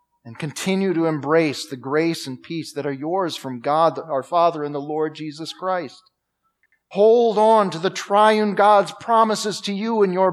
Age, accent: 40-59, American